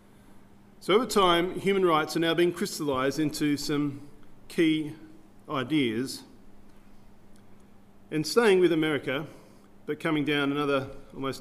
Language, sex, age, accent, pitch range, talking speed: English, male, 40-59, Australian, 105-160 Hz, 115 wpm